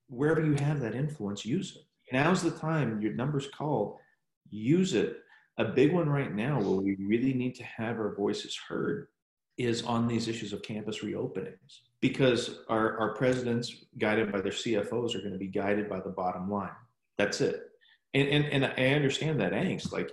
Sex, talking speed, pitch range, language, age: male, 185 wpm, 100-130 Hz, English, 40-59